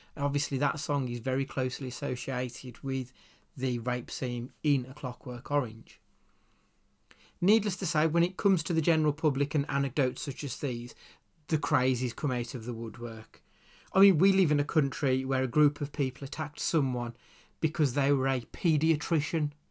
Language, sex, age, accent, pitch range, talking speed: English, male, 30-49, British, 125-155 Hz, 170 wpm